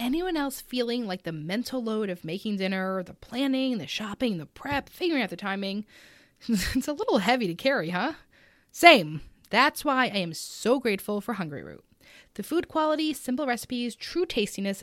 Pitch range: 185-270 Hz